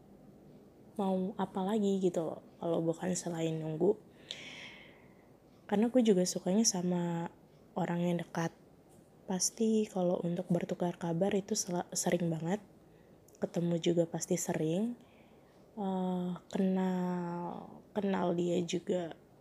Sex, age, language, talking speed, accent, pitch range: female, 20-39, Indonesian, 105 wpm, native, 170-195 Hz